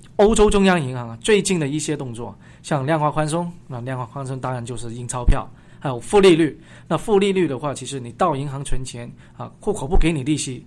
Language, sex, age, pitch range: Chinese, male, 20-39, 125-165 Hz